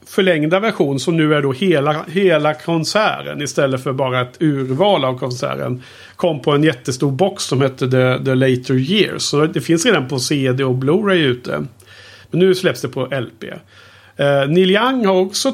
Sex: male